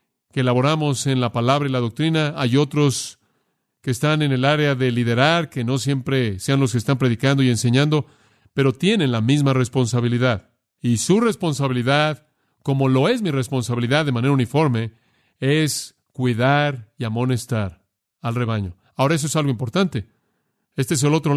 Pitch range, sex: 130-170 Hz, male